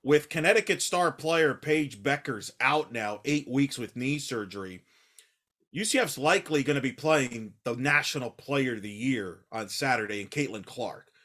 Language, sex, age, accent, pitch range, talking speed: English, male, 30-49, American, 135-170 Hz, 160 wpm